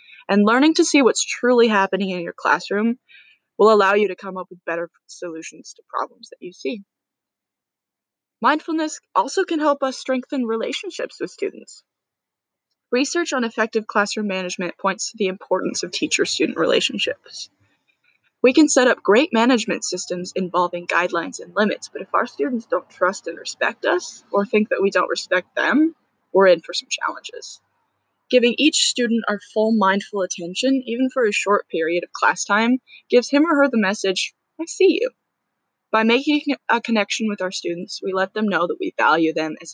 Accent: American